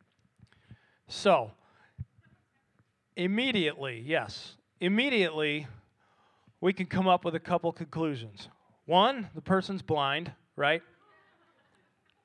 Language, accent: English, American